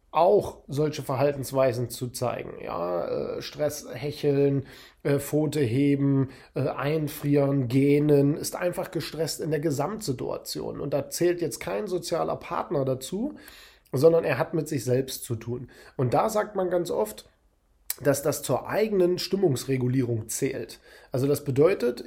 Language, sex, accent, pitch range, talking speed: German, male, German, 140-175 Hz, 130 wpm